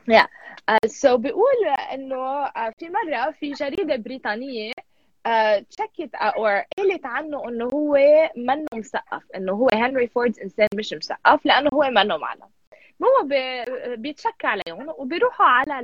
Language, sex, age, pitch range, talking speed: Arabic, female, 20-39, 210-305 Hz, 135 wpm